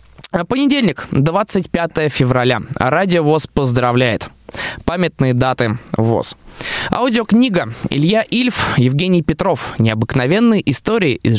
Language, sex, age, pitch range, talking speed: Russian, male, 20-39, 120-185 Hz, 90 wpm